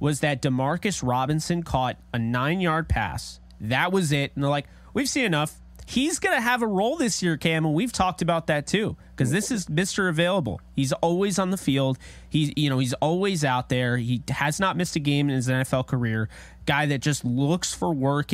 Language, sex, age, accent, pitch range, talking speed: English, male, 30-49, American, 130-175 Hz, 215 wpm